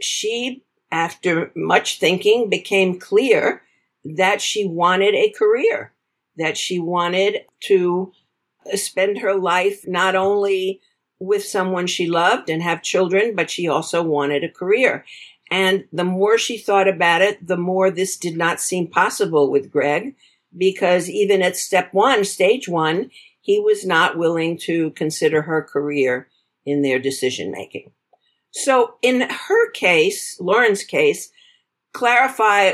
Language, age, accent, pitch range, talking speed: English, 50-69, American, 170-215 Hz, 135 wpm